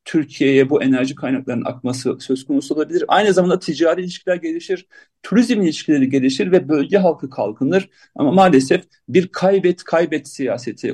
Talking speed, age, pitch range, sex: 145 wpm, 40-59, 135-190 Hz, male